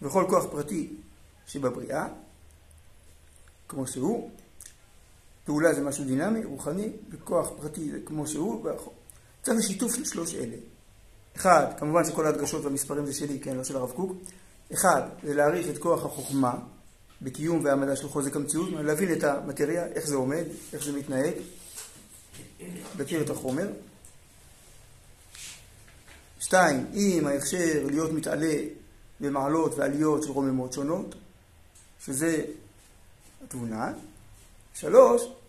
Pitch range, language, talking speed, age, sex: 130-190 Hz, Hebrew, 115 wpm, 50-69, male